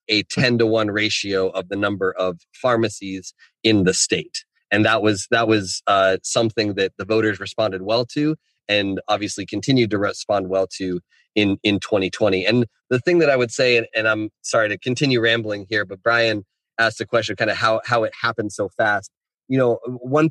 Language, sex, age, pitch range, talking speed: English, male, 30-49, 105-120 Hz, 200 wpm